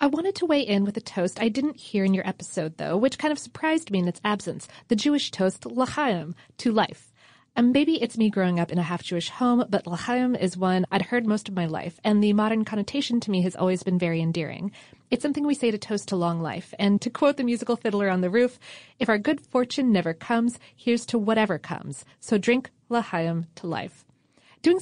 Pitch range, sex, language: 175-240 Hz, female, English